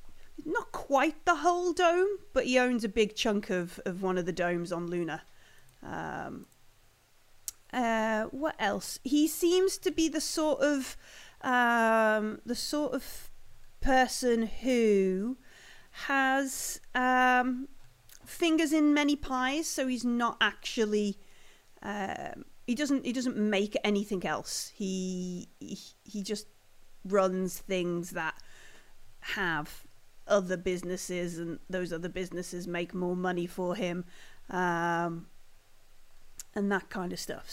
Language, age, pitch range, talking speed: English, 30-49, 185-275 Hz, 125 wpm